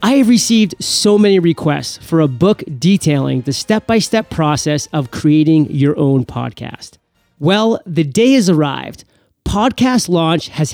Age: 30-49